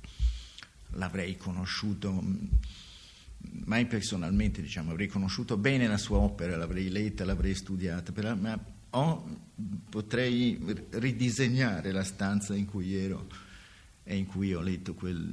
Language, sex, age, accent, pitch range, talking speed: Italian, male, 50-69, native, 90-110 Hz, 125 wpm